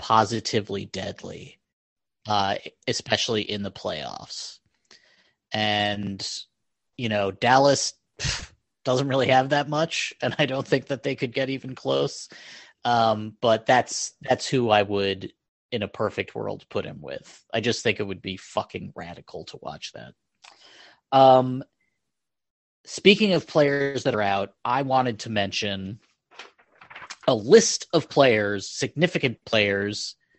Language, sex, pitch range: English, male, 110-145 Hz